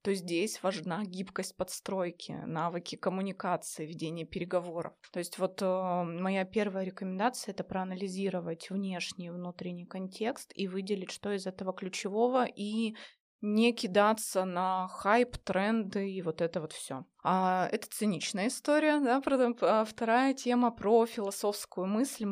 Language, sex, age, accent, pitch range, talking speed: Russian, female, 20-39, native, 185-220 Hz, 140 wpm